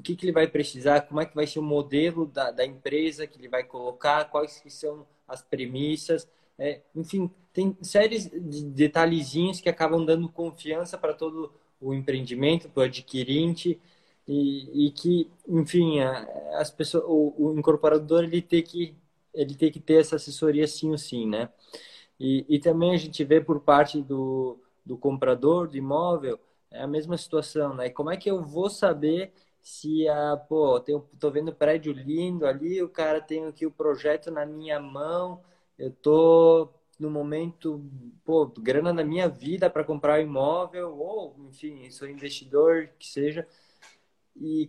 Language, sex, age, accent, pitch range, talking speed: Portuguese, male, 20-39, Brazilian, 145-165 Hz, 170 wpm